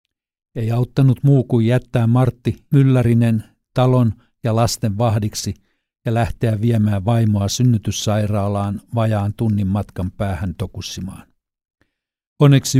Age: 60-79